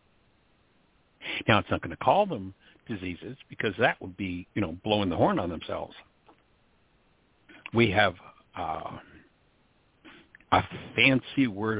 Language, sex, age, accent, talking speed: English, male, 60-79, American, 125 wpm